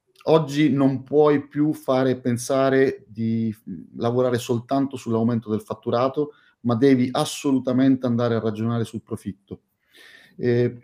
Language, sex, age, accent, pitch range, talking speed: Italian, male, 30-49, native, 115-145 Hz, 115 wpm